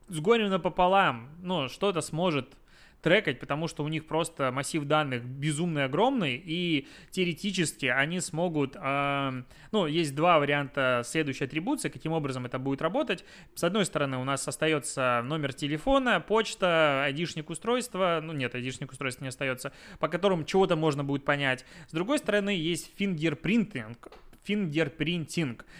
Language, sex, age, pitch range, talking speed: Russian, male, 20-39, 140-180 Hz, 140 wpm